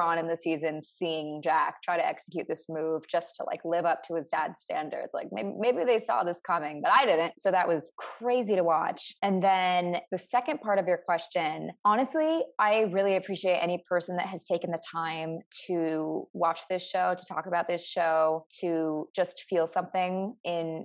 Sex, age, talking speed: female, 20-39, 200 wpm